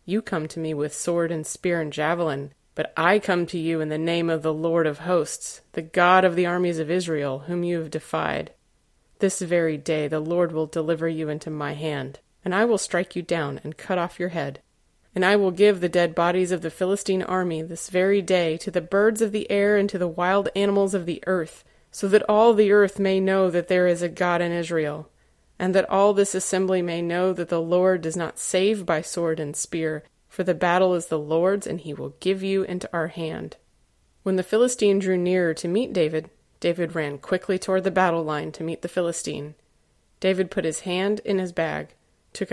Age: 30-49